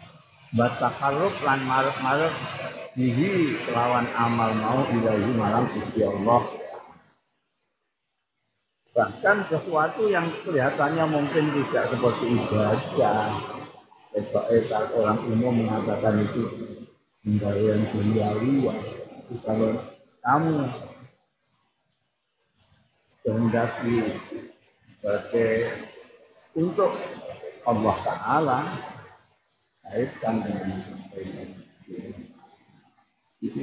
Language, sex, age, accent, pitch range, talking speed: Indonesian, male, 50-69, native, 105-130 Hz, 50 wpm